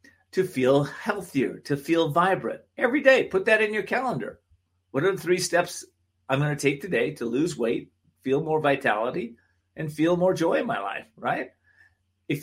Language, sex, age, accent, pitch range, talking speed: English, male, 40-59, American, 115-175 Hz, 180 wpm